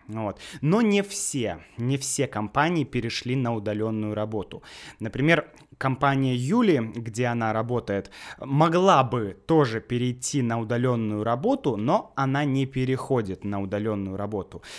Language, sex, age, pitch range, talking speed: Russian, male, 20-39, 115-155 Hz, 120 wpm